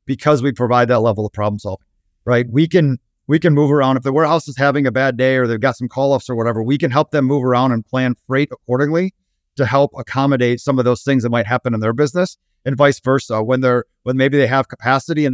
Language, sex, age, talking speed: English, male, 30-49, 255 wpm